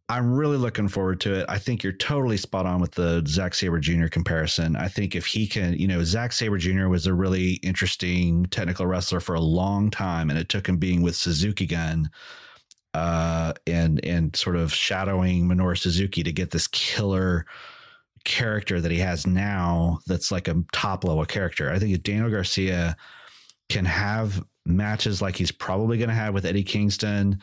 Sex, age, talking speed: male, 30-49, 190 wpm